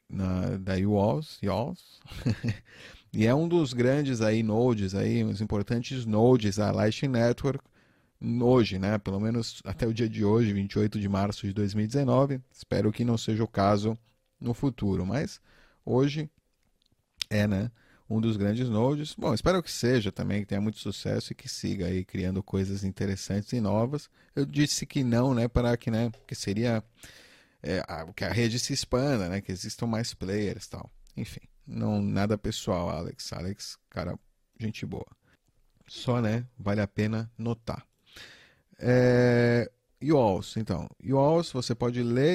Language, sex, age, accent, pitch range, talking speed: Portuguese, male, 30-49, Brazilian, 105-125 Hz, 160 wpm